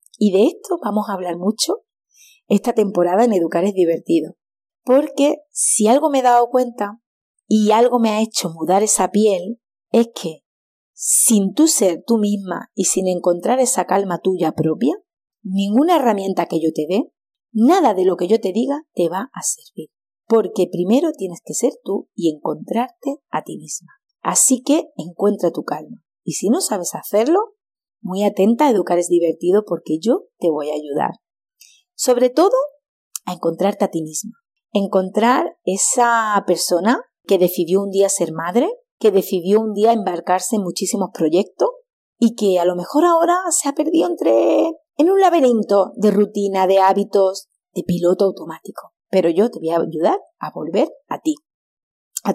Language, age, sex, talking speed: Spanish, 30-49, female, 165 wpm